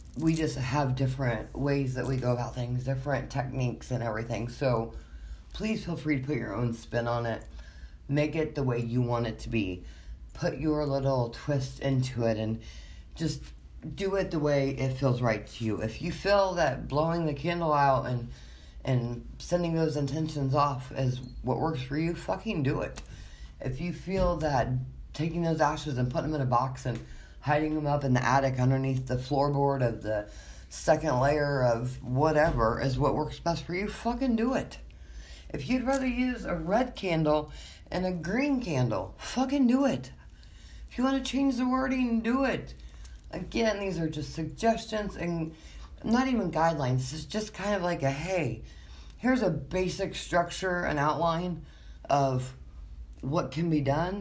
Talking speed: 180 wpm